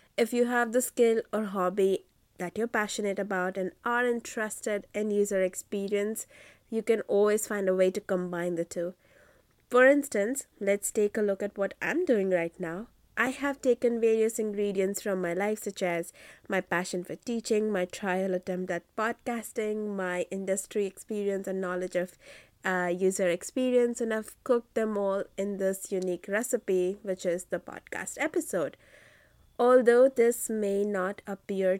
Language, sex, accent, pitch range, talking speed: English, female, Indian, 190-235 Hz, 160 wpm